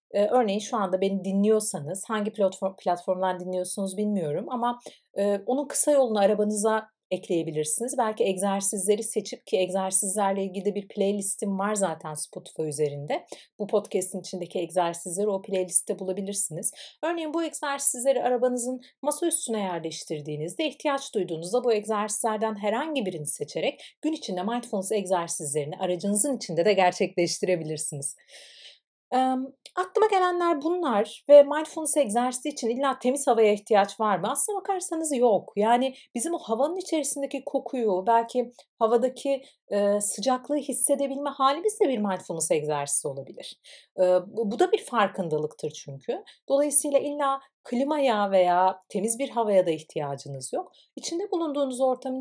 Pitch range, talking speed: 190-265 Hz, 125 wpm